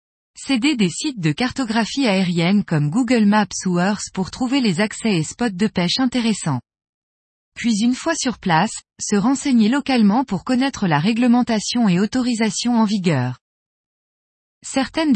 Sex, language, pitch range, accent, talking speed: female, French, 180-245 Hz, French, 145 wpm